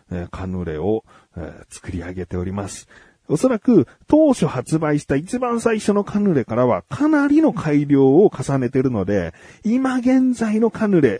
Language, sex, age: Japanese, male, 40-59